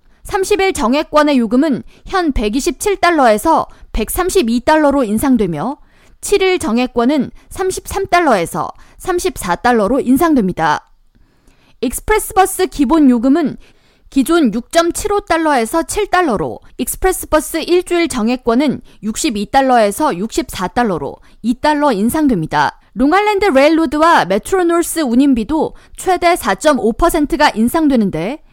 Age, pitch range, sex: 20-39, 245-345 Hz, female